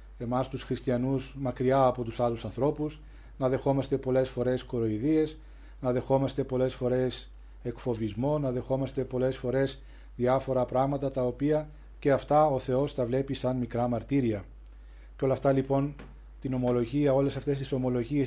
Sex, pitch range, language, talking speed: male, 125-135 Hz, Greek, 150 wpm